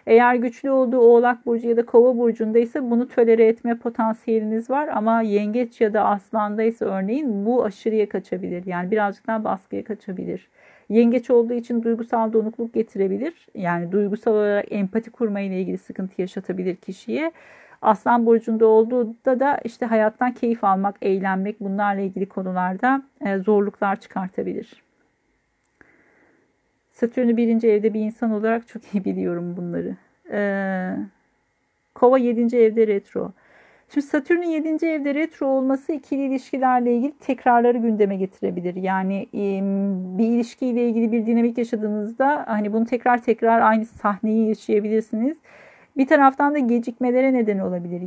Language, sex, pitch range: Turkish, female, 205-245 Hz